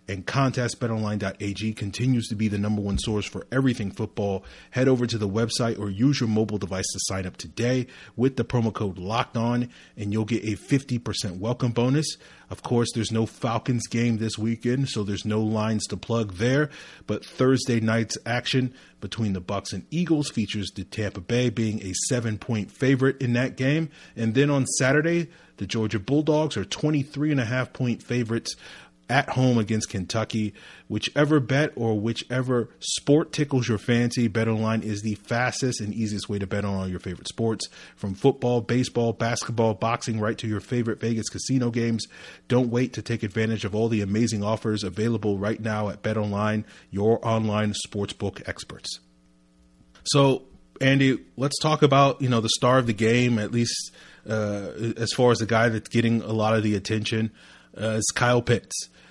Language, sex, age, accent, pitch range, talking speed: English, male, 30-49, American, 105-125 Hz, 180 wpm